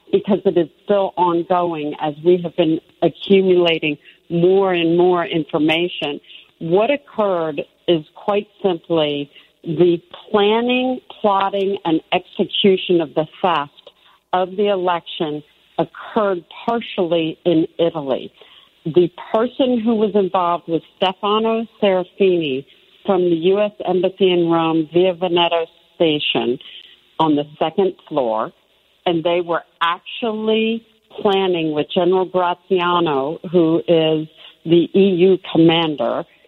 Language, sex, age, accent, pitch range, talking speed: English, female, 50-69, American, 160-195 Hz, 110 wpm